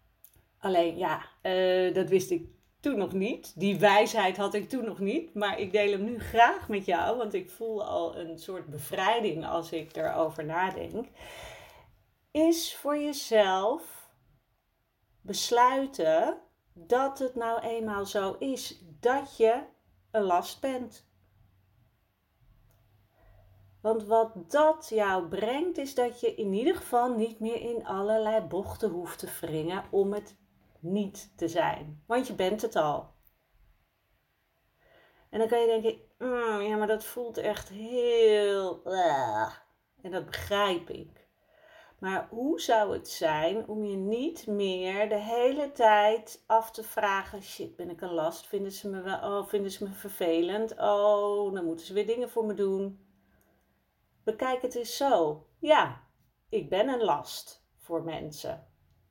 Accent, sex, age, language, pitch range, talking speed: Dutch, female, 40-59, Dutch, 170-230 Hz, 145 wpm